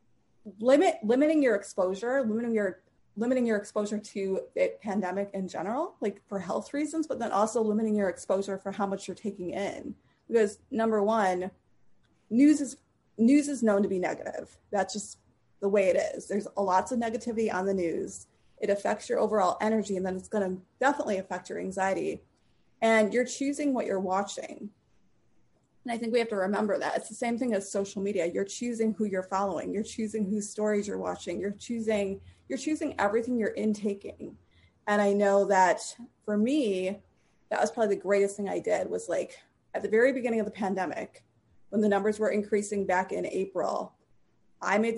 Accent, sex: American, female